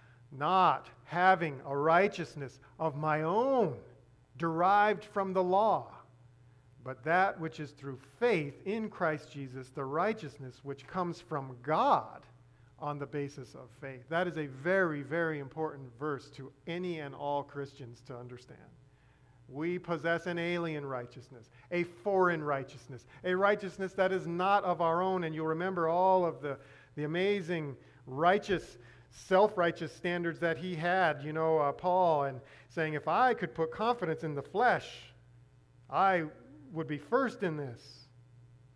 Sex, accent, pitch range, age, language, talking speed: male, American, 135-185 Hz, 50-69, English, 145 wpm